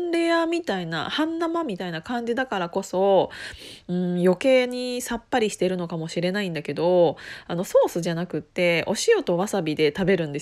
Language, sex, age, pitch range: Japanese, female, 20-39, 180-250 Hz